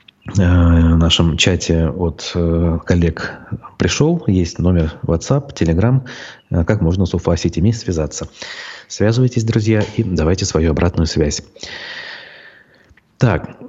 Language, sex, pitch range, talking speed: Russian, male, 95-120 Hz, 100 wpm